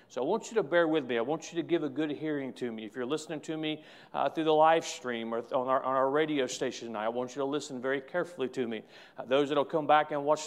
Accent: American